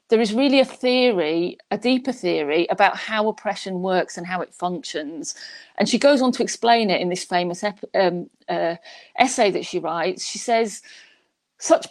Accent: British